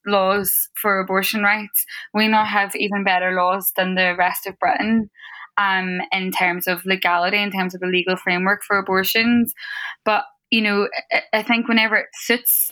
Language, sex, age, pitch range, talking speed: English, female, 10-29, 180-205 Hz, 170 wpm